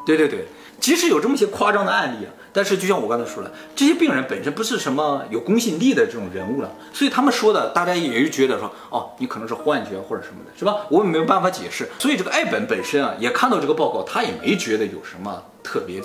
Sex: male